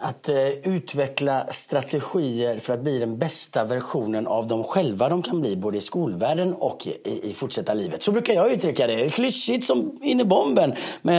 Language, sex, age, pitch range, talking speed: Swedish, male, 30-49, 120-180 Hz, 195 wpm